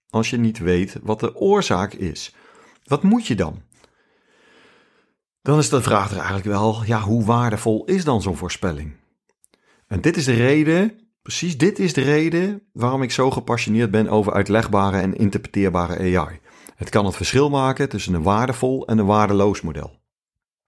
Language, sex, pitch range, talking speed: Dutch, male, 100-120 Hz, 170 wpm